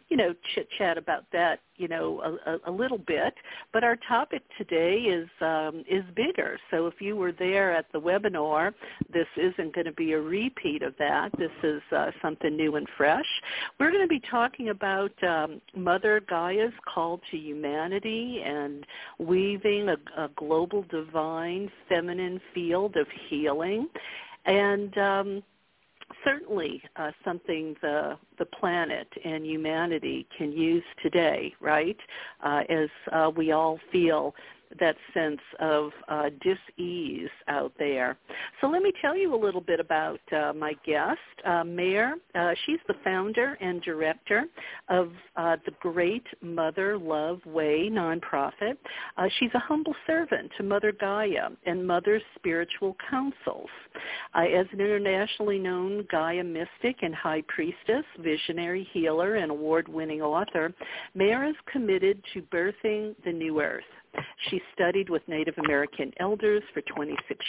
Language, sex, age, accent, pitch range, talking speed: English, female, 50-69, American, 160-210 Hz, 145 wpm